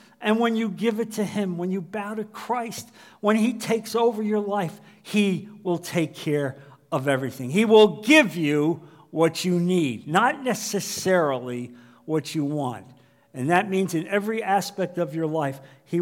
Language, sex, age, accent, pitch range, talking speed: English, male, 50-69, American, 155-220 Hz, 170 wpm